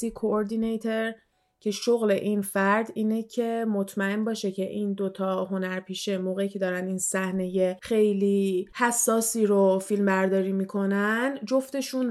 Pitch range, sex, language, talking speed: 190-215 Hz, female, Persian, 125 wpm